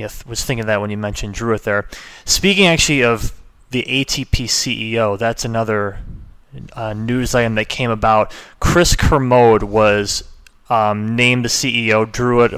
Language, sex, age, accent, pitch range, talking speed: English, male, 30-49, American, 110-130 Hz, 150 wpm